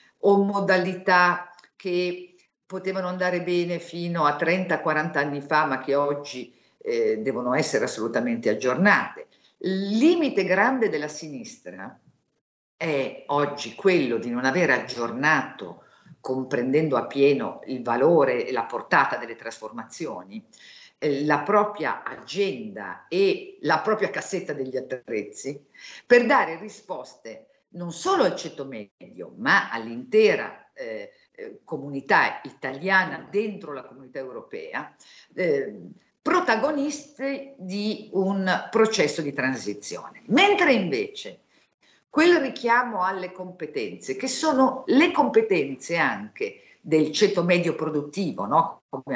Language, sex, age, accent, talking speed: Italian, female, 50-69, native, 110 wpm